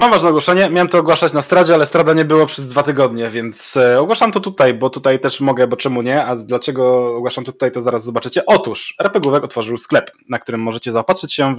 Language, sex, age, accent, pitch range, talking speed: Polish, male, 20-39, native, 115-155 Hz, 235 wpm